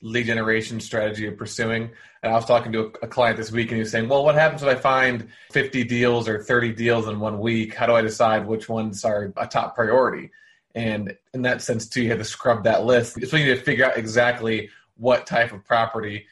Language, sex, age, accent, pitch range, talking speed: English, male, 20-39, American, 110-120 Hz, 235 wpm